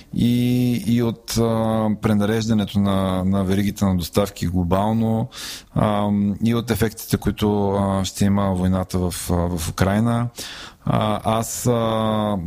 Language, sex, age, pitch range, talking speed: Bulgarian, male, 20-39, 95-110 Hz, 85 wpm